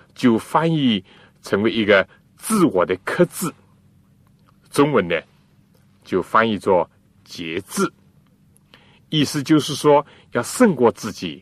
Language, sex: Chinese, male